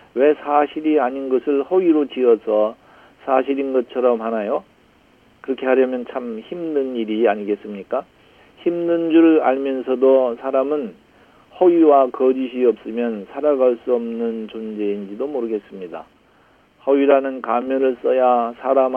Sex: male